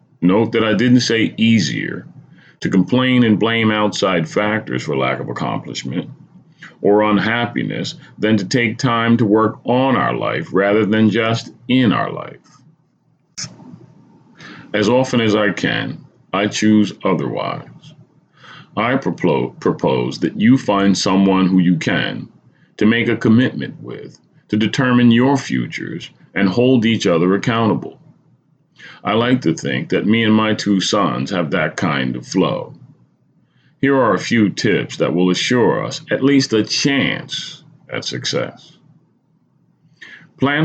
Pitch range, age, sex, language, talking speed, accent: 100-125 Hz, 40-59, male, English, 140 wpm, American